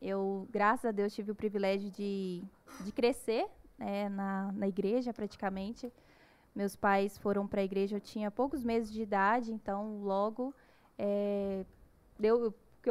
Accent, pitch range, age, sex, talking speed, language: Brazilian, 205-245 Hz, 10-29, female, 150 wpm, Portuguese